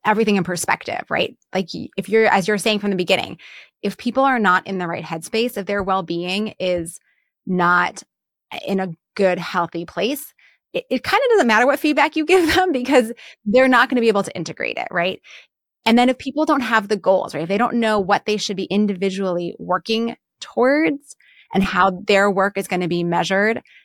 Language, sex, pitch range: English, female, 185-235 Hz